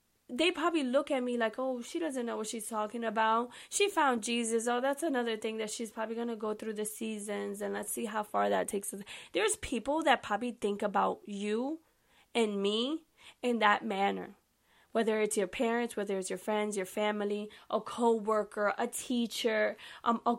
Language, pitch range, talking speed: English, 210-260 Hz, 190 wpm